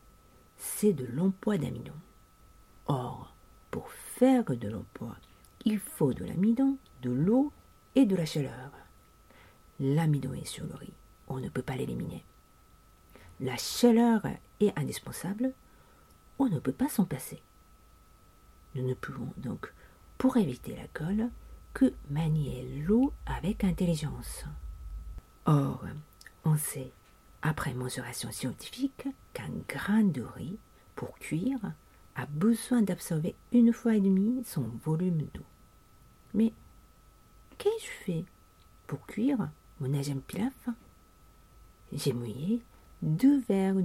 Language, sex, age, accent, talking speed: French, female, 50-69, French, 120 wpm